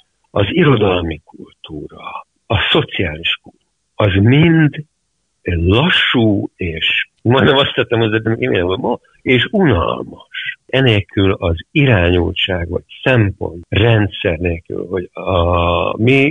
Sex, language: male, Hungarian